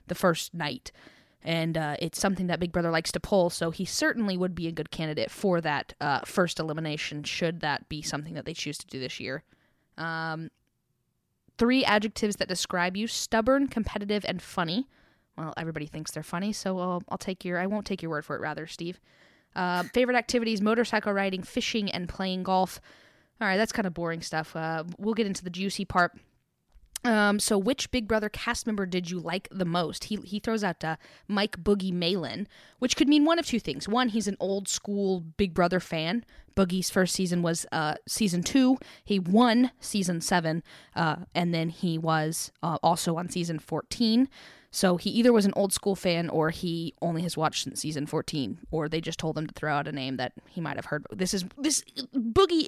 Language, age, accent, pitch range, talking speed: English, 10-29, American, 165-210 Hz, 205 wpm